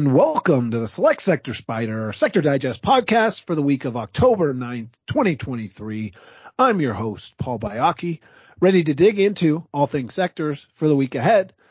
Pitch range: 120-160 Hz